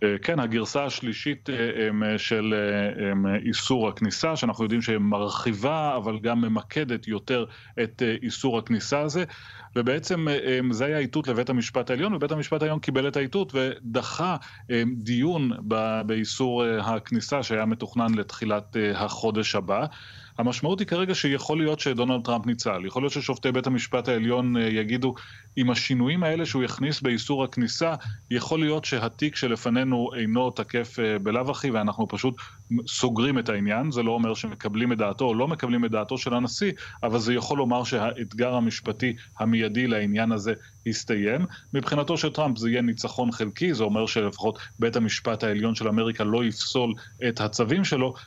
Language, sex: Hebrew, male